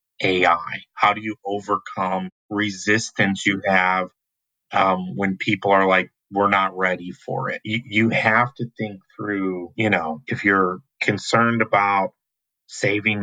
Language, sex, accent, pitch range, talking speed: English, male, American, 95-105 Hz, 140 wpm